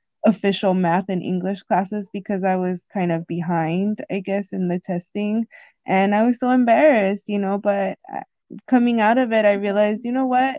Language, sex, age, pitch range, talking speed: English, female, 20-39, 180-215 Hz, 185 wpm